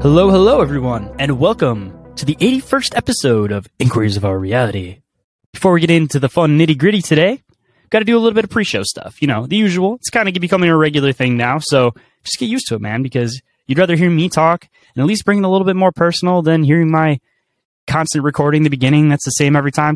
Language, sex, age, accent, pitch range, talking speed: English, male, 10-29, American, 135-195 Hz, 240 wpm